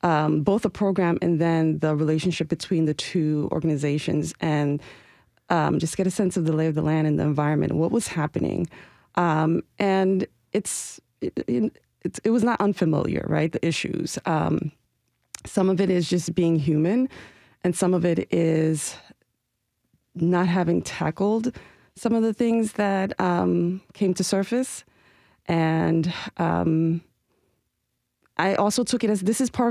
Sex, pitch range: female, 160-190 Hz